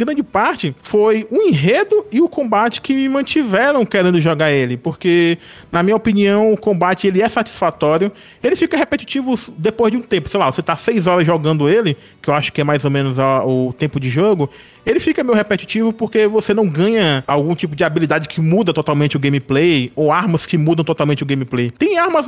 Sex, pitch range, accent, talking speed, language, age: male, 155-225 Hz, Brazilian, 205 wpm, Portuguese, 20-39